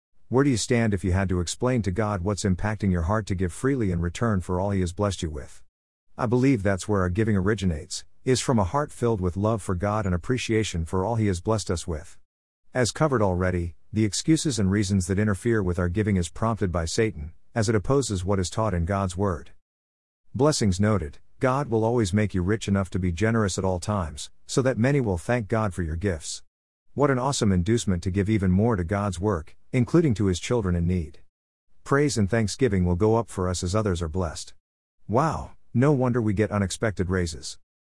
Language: English